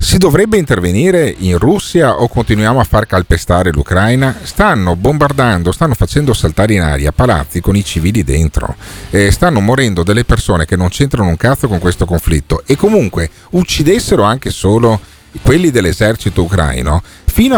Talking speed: 150 wpm